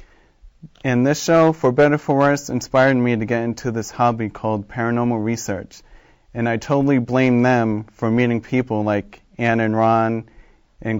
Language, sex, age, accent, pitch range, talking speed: English, male, 40-59, American, 110-130 Hz, 170 wpm